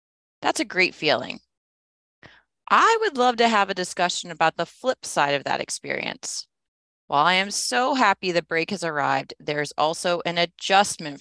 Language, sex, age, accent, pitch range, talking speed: English, female, 30-49, American, 145-185 Hz, 165 wpm